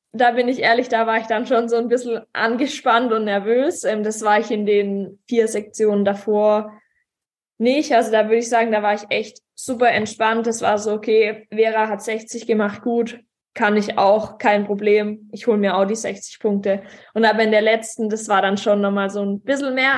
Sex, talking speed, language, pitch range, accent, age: female, 210 wpm, German, 215-240 Hz, German, 20-39